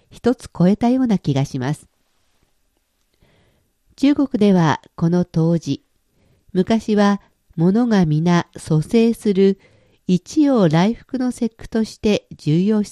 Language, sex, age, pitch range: Japanese, female, 50-69, 155-220 Hz